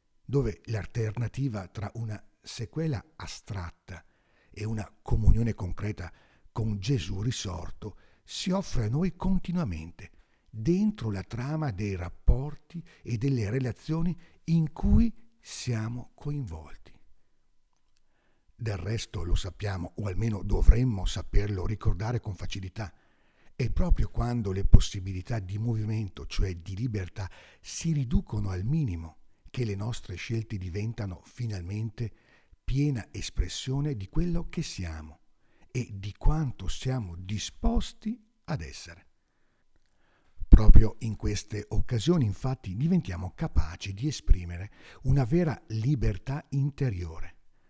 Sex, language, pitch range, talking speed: male, Italian, 90-130 Hz, 110 wpm